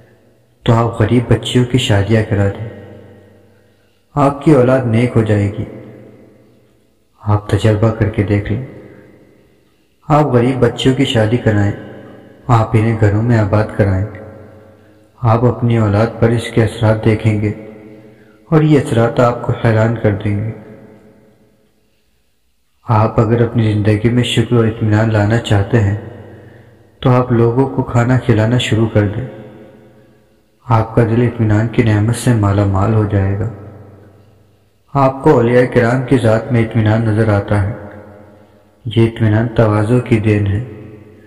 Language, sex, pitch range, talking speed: Urdu, male, 105-120 Hz, 145 wpm